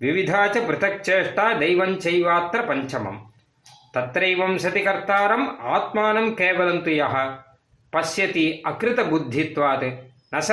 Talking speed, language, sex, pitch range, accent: 85 wpm, Tamil, male, 135-200 Hz, native